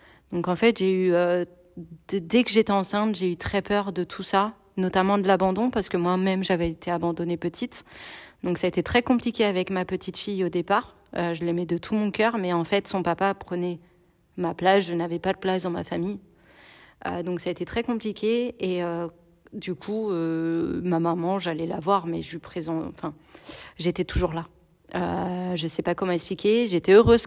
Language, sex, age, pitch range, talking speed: French, female, 30-49, 170-195 Hz, 205 wpm